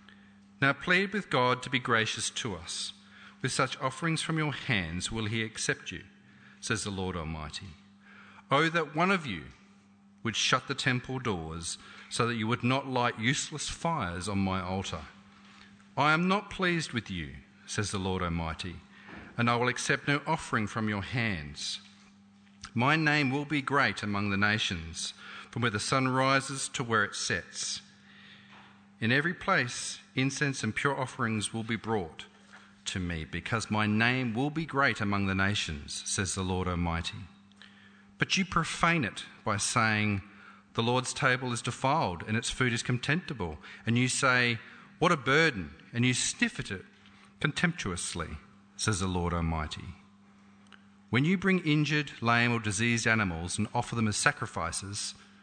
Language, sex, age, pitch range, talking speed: English, male, 40-59, 100-135 Hz, 160 wpm